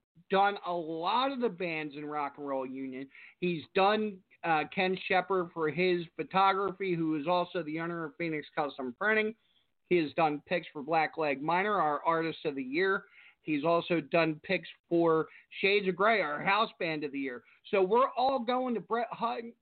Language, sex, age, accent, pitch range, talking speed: English, male, 50-69, American, 160-220 Hz, 190 wpm